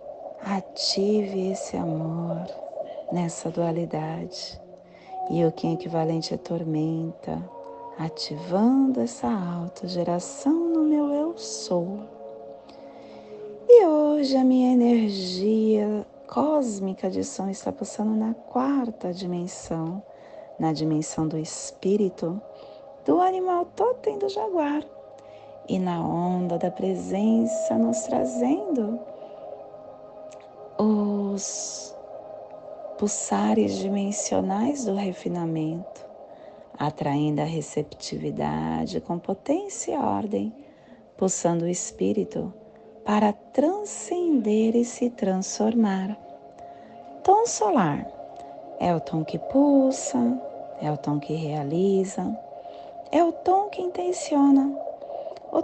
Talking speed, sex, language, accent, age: 95 wpm, female, Portuguese, Brazilian, 30-49